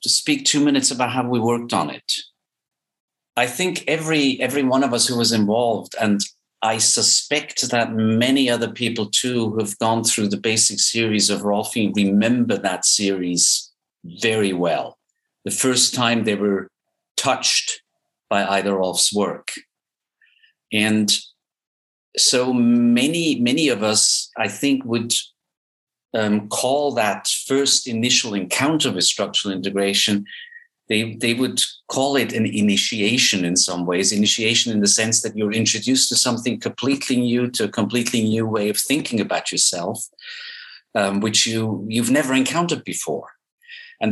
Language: English